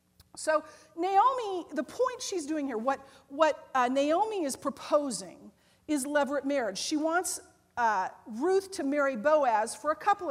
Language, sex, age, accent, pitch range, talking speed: English, female, 40-59, American, 245-330 Hz, 150 wpm